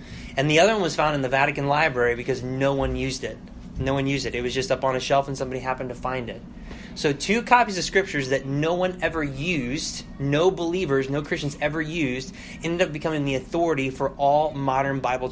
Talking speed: 225 wpm